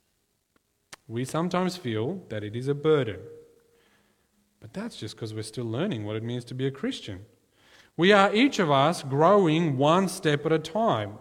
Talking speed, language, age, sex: 175 wpm, English, 40-59, male